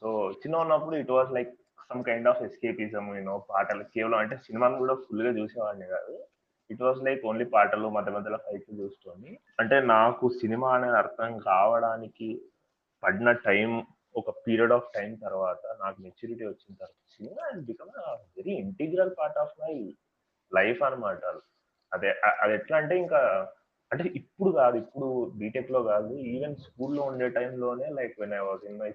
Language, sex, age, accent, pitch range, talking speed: Telugu, male, 30-49, native, 110-155 Hz, 145 wpm